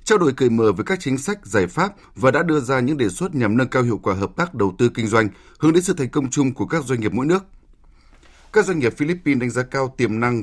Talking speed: 280 wpm